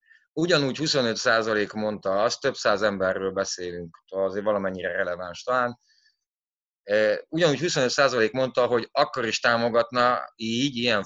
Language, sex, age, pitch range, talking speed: Hungarian, male, 30-49, 100-125 Hz, 115 wpm